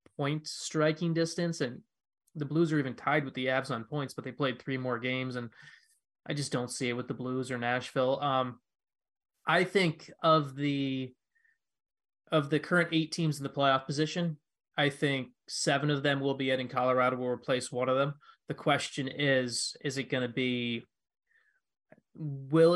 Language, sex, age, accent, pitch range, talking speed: English, male, 20-39, American, 125-150 Hz, 180 wpm